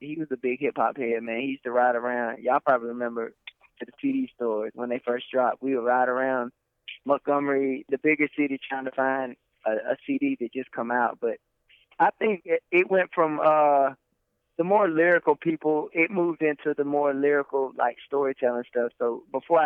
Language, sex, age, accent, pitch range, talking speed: English, male, 20-39, American, 120-155 Hz, 190 wpm